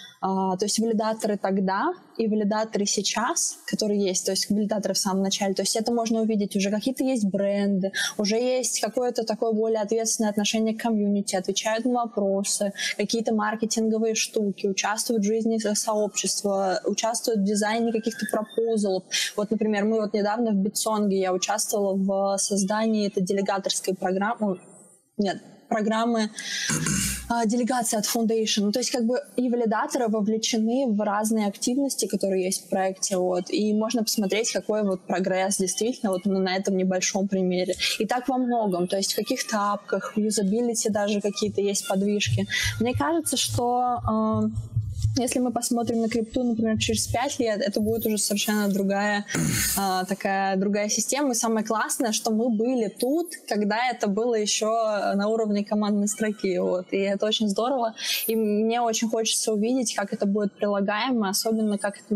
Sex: female